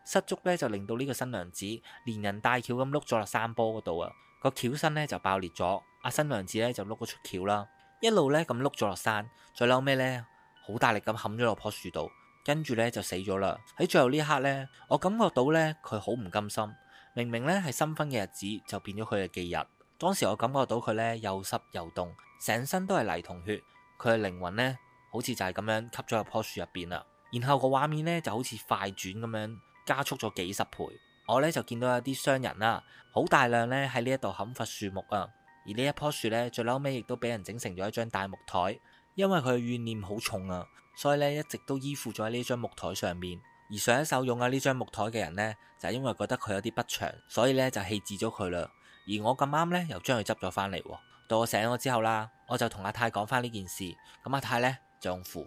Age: 20-39